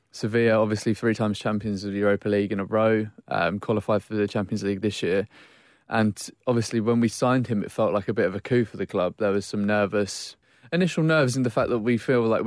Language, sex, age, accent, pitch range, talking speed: English, male, 20-39, British, 105-115 Hz, 240 wpm